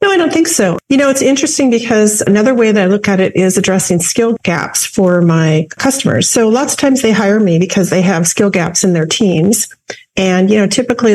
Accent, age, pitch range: American, 40-59, 170-215 Hz